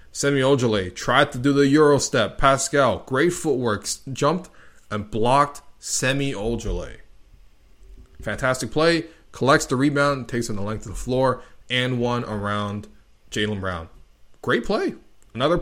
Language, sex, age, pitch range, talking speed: English, male, 20-39, 110-155 Hz, 130 wpm